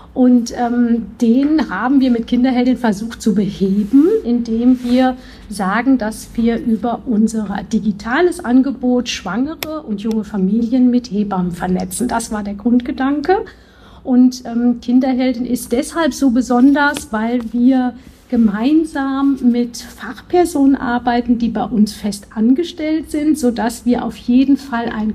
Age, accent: 50-69, German